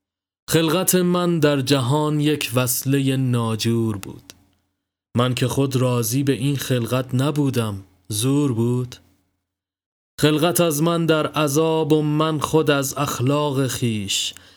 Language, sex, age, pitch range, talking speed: Persian, male, 30-49, 110-145 Hz, 120 wpm